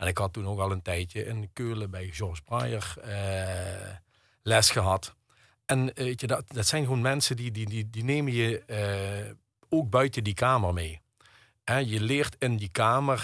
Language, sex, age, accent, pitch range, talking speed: Dutch, male, 50-69, Dutch, 105-120 Hz, 190 wpm